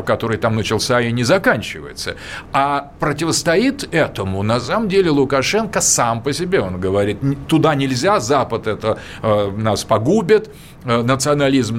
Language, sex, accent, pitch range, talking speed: Russian, male, native, 115-155 Hz, 135 wpm